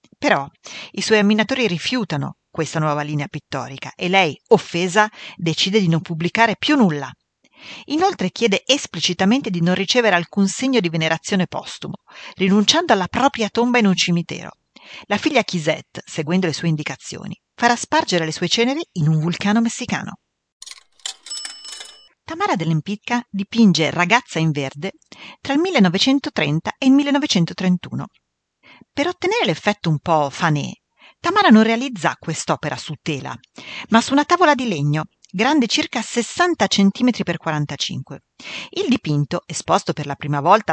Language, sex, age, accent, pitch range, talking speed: Italian, female, 40-59, native, 160-235 Hz, 140 wpm